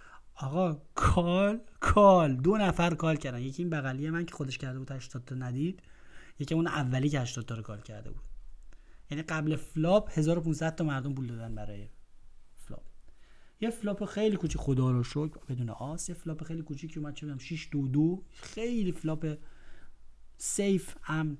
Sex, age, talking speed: male, 30-49, 165 wpm